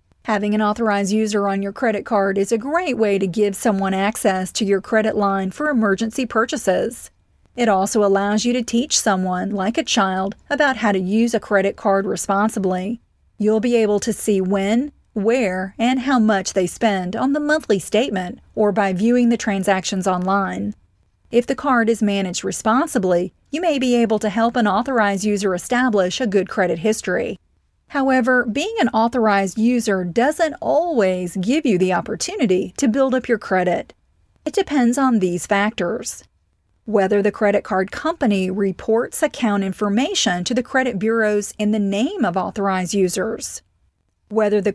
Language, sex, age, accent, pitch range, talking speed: English, female, 40-59, American, 195-240 Hz, 165 wpm